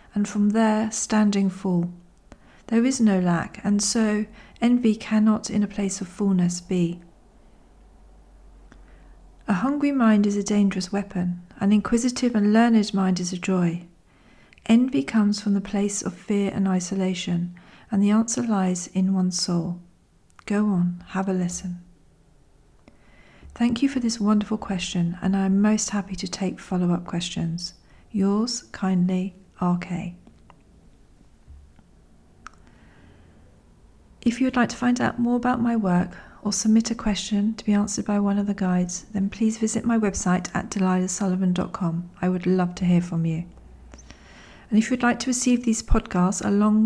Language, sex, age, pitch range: English, female, 40-59, 180-215 Hz